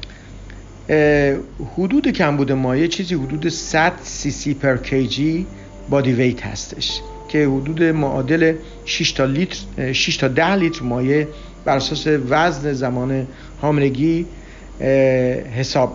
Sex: male